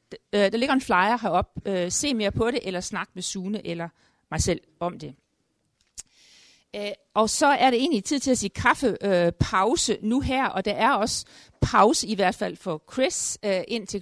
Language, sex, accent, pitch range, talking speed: Danish, female, native, 195-240 Hz, 175 wpm